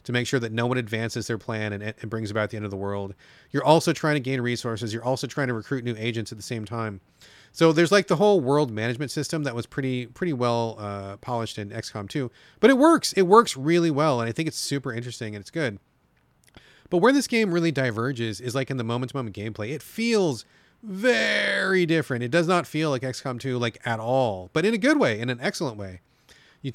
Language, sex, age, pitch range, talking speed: English, male, 30-49, 115-165 Hz, 235 wpm